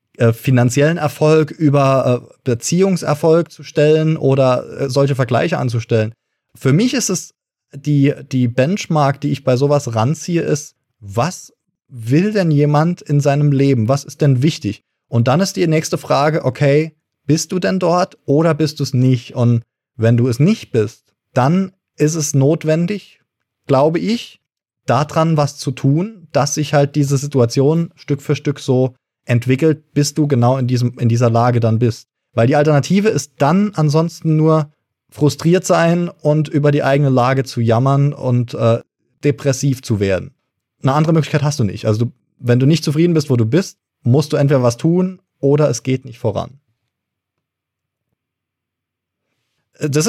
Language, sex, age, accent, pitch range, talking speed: German, male, 20-39, German, 125-155 Hz, 160 wpm